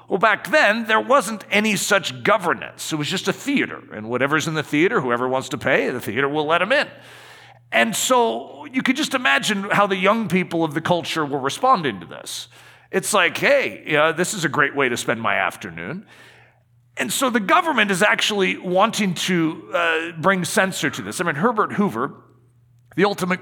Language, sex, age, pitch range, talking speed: English, male, 40-59, 140-200 Hz, 200 wpm